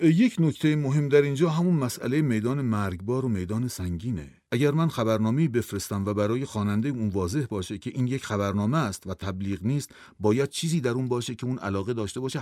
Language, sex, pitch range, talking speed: Persian, male, 100-135 Hz, 195 wpm